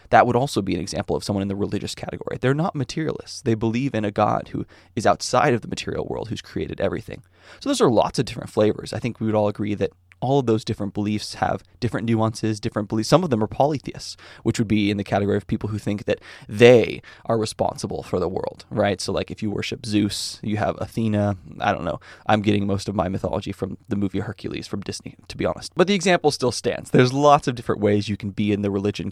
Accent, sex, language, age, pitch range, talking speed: American, male, English, 20-39, 100-115 Hz, 245 wpm